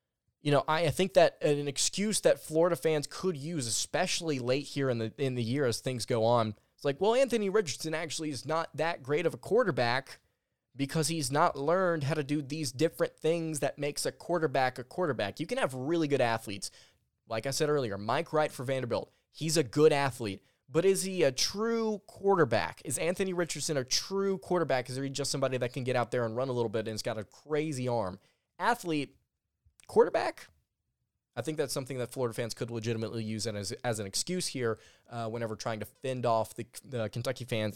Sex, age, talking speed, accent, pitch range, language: male, 20-39, 205 wpm, American, 120-155 Hz, English